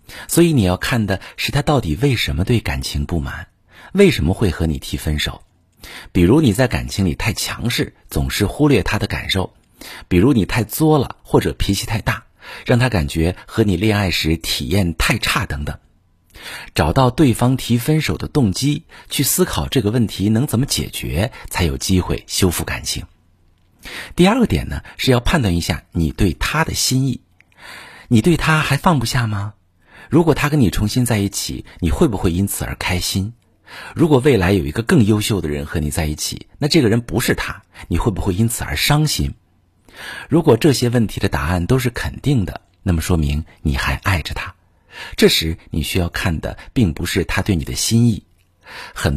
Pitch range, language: 85-125 Hz, Chinese